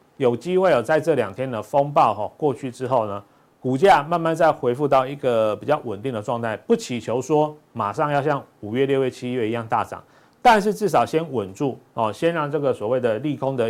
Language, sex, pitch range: Chinese, male, 115-150 Hz